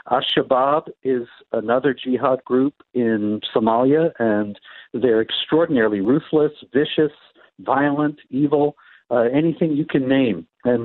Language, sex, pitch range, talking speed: English, male, 120-150 Hz, 115 wpm